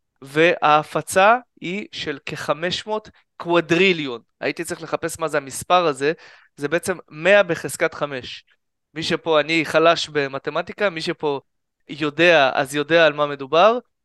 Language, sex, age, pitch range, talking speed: Hebrew, male, 20-39, 145-180 Hz, 130 wpm